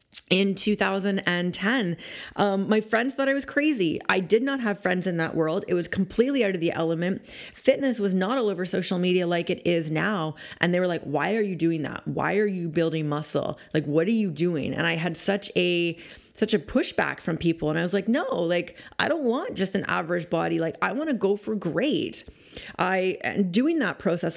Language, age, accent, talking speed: English, 30-49, American, 220 wpm